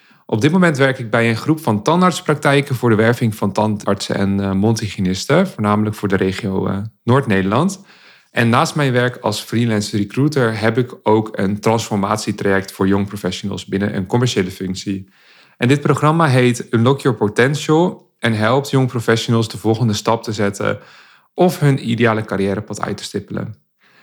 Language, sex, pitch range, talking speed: Dutch, male, 105-135 Hz, 160 wpm